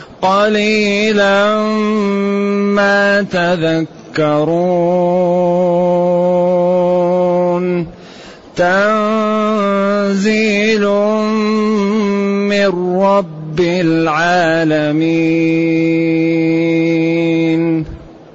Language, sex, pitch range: Arabic, male, 150-200 Hz